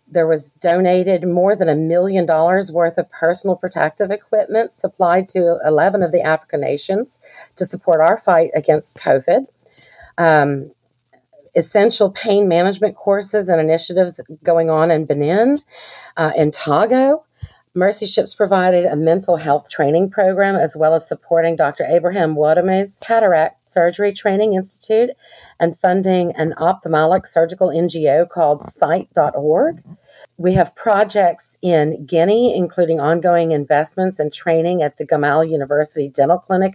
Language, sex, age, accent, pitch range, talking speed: English, female, 40-59, American, 160-195 Hz, 135 wpm